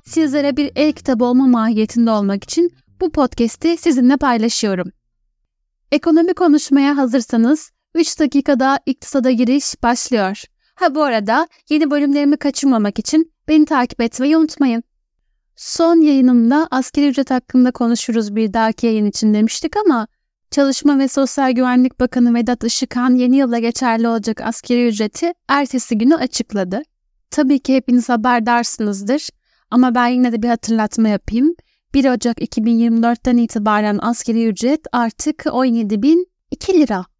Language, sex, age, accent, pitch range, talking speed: Turkish, female, 10-29, native, 235-290 Hz, 125 wpm